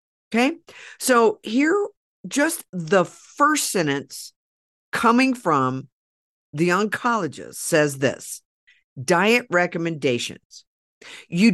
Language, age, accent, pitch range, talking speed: English, 50-69, American, 155-220 Hz, 85 wpm